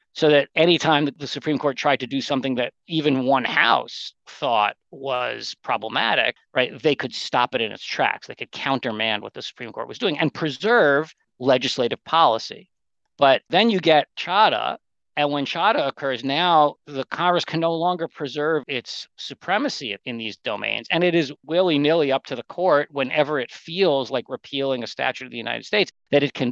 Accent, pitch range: American, 125-160 Hz